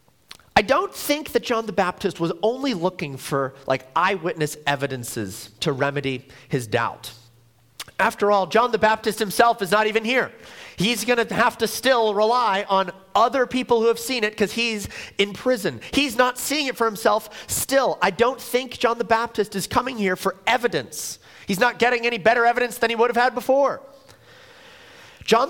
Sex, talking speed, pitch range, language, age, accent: male, 180 wpm, 150-235 Hz, English, 30-49, American